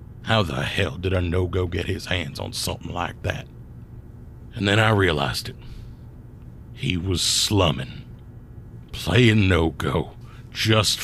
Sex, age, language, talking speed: male, 60-79, English, 140 wpm